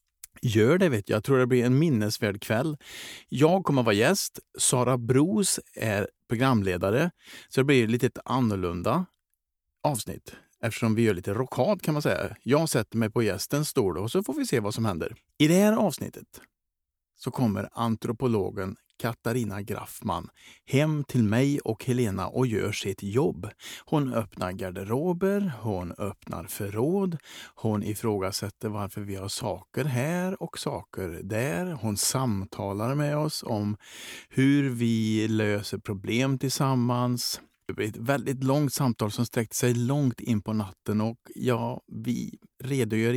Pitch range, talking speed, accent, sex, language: 105-135 Hz, 145 wpm, Norwegian, male, Swedish